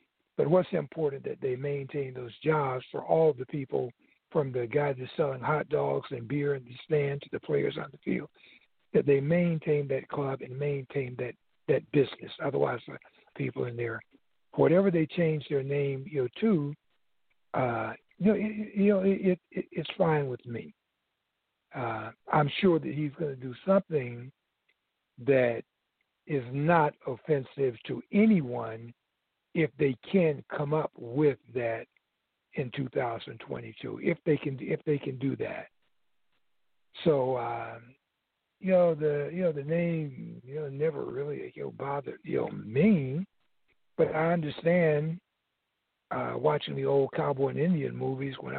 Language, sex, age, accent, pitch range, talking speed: English, male, 60-79, American, 135-170 Hz, 160 wpm